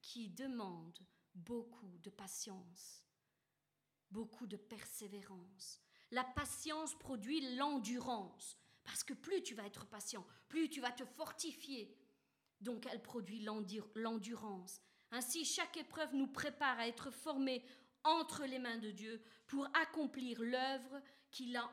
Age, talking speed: 40-59, 130 wpm